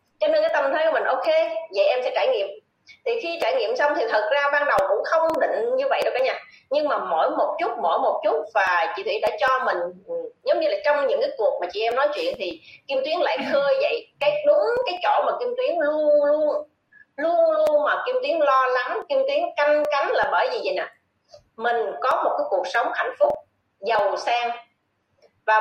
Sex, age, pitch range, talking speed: female, 20-39, 270-350 Hz, 235 wpm